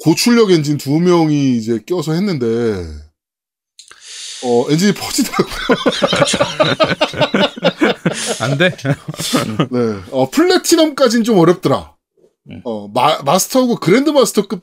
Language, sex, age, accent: Korean, male, 20-39, native